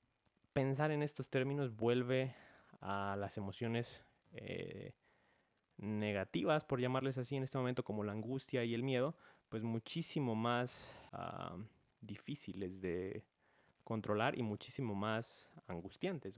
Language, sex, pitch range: Spanish, male, 100-125 Hz